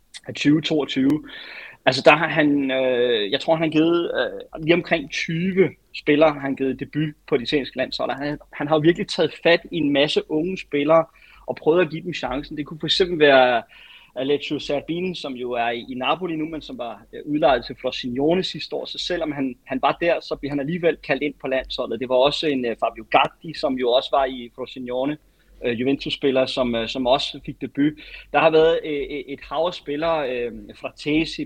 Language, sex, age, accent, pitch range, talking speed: Danish, male, 30-49, native, 135-170 Hz, 200 wpm